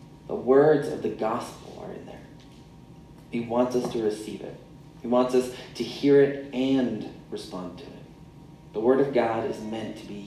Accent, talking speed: American, 185 wpm